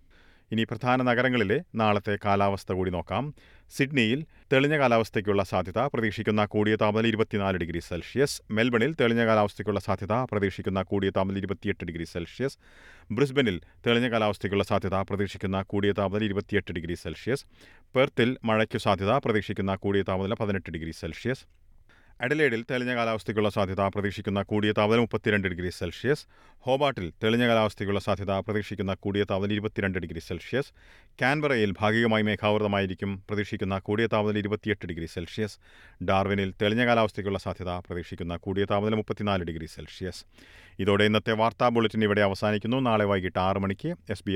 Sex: male